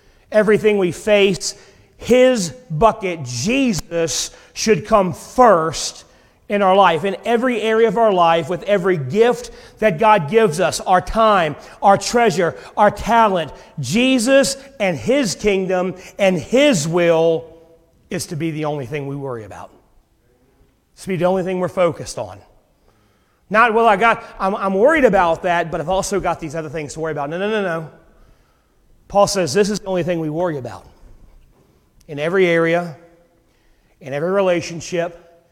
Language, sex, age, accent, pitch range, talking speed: English, male, 40-59, American, 160-210 Hz, 155 wpm